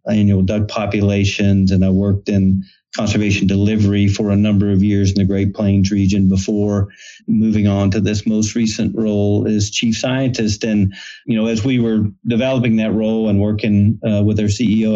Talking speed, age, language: 180 wpm, 30-49, English